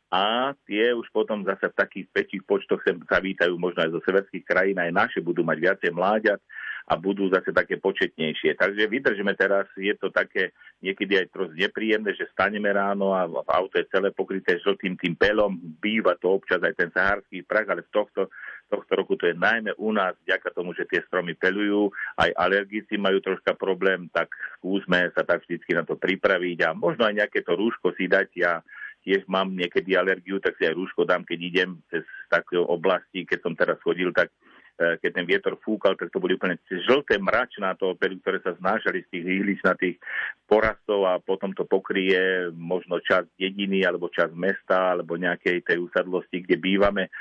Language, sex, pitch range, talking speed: Slovak, male, 90-105 Hz, 190 wpm